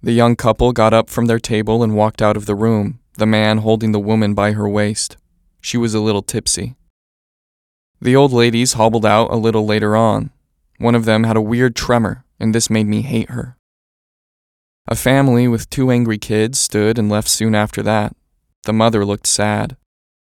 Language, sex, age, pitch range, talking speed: English, male, 20-39, 105-115 Hz, 195 wpm